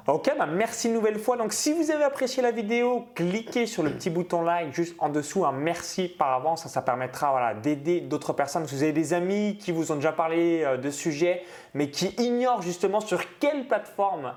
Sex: male